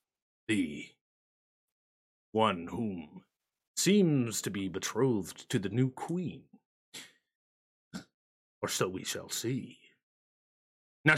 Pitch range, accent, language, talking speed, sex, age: 120-180 Hz, American, English, 85 wpm, male, 30-49